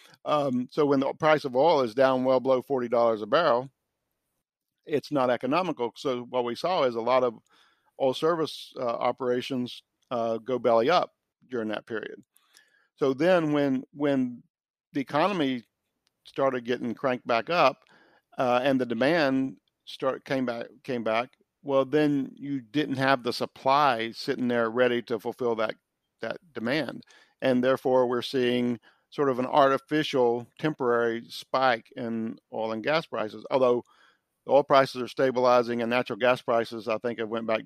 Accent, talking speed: American, 160 wpm